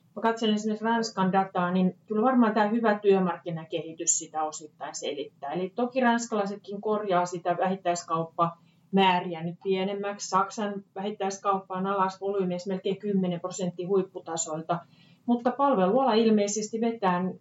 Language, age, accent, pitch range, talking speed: Finnish, 30-49, native, 175-200 Hz, 115 wpm